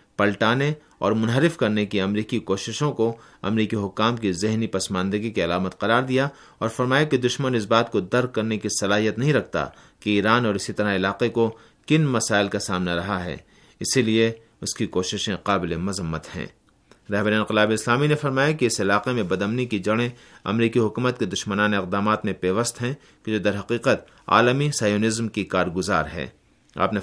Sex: male